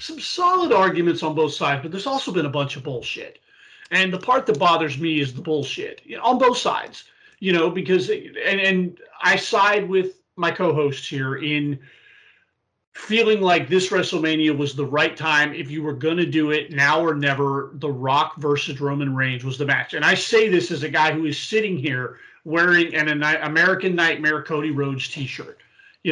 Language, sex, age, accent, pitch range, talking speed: English, male, 40-59, American, 145-190 Hz, 190 wpm